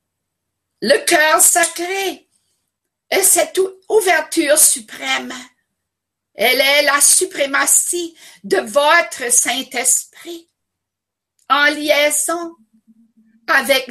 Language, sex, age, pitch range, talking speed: French, female, 50-69, 235-335 Hz, 75 wpm